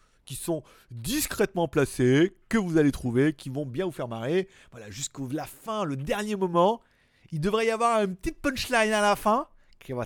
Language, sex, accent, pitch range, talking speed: French, male, French, 130-195 Hz, 195 wpm